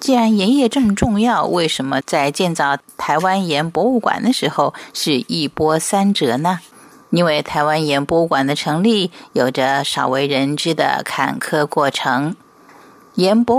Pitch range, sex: 145-220 Hz, female